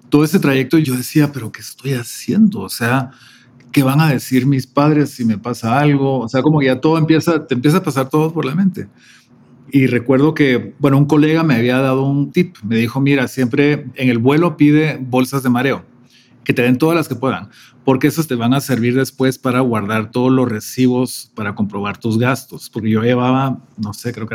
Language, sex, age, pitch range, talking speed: Spanish, male, 40-59, 120-150 Hz, 215 wpm